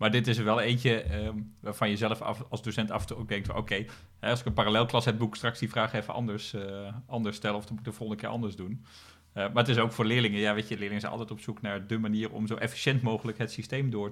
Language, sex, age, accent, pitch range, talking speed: Dutch, male, 30-49, Dutch, 100-115 Hz, 285 wpm